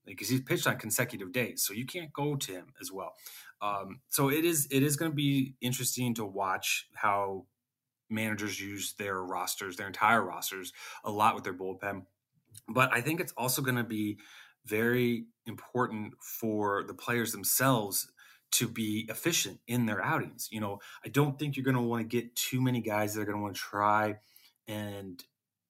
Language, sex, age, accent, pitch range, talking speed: English, male, 30-49, American, 100-130 Hz, 190 wpm